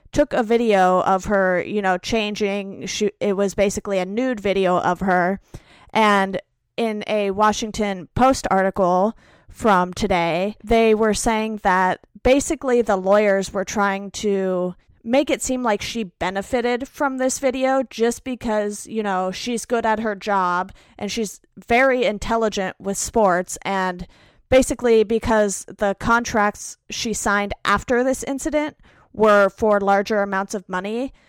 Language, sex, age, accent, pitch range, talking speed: English, female, 30-49, American, 190-235 Hz, 140 wpm